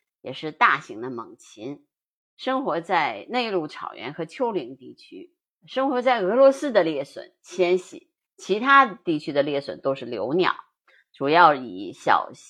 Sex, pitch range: female, 155-260 Hz